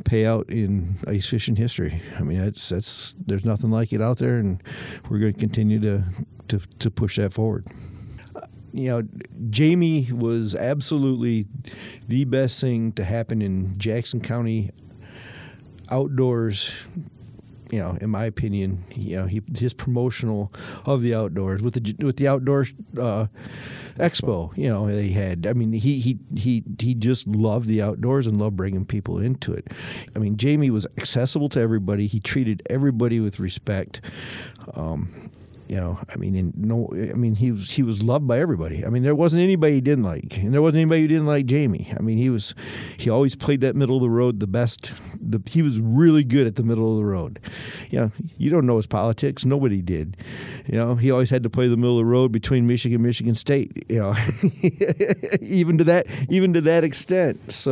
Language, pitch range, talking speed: English, 105-130 Hz, 195 wpm